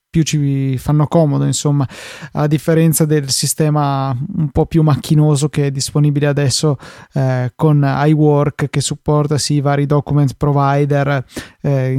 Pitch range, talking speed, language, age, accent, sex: 145-165 Hz, 135 wpm, Italian, 20-39, native, male